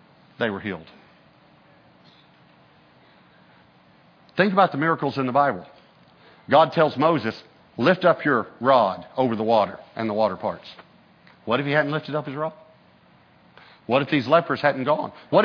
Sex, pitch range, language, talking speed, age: male, 150-205 Hz, English, 150 wpm, 50-69